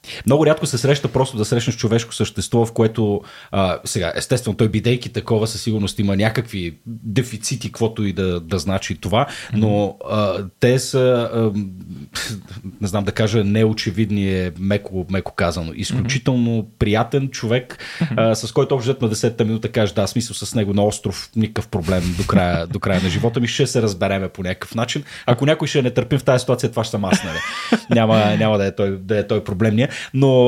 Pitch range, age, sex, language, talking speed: 105-130 Hz, 30-49, male, Bulgarian, 185 wpm